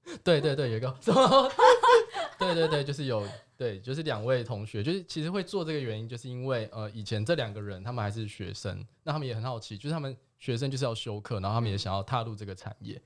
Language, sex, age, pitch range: Chinese, male, 20-39, 105-130 Hz